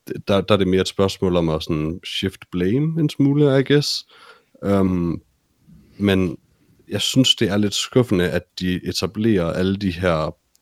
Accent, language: native, Danish